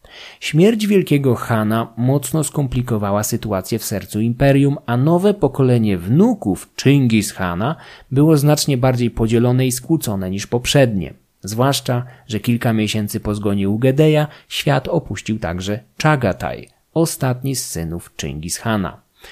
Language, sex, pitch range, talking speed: Polish, male, 110-140 Hz, 120 wpm